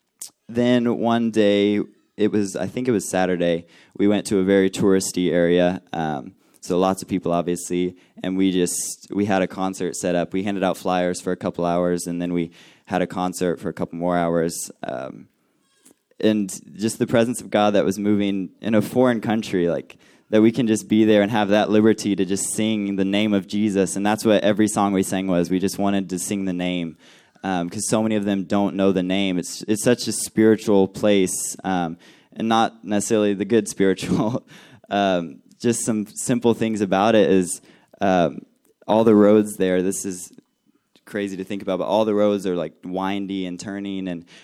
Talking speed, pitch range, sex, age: 205 wpm, 90-105 Hz, male, 20-39